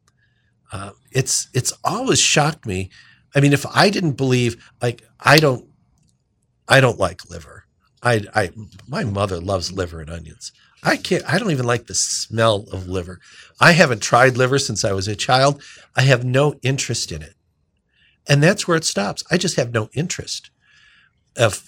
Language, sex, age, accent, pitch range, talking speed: English, male, 50-69, American, 105-140 Hz, 175 wpm